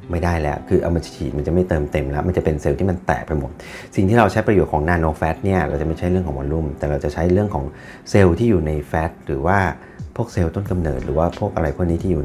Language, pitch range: Thai, 75-90 Hz